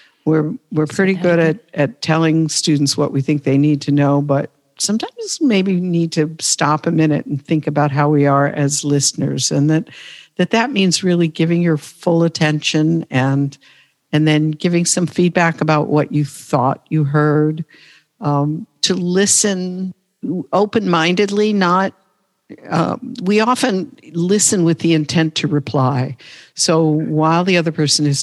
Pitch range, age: 145-180 Hz, 60-79